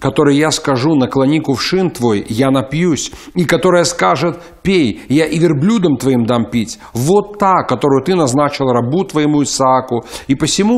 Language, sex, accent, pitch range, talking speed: Russian, male, native, 130-175 Hz, 155 wpm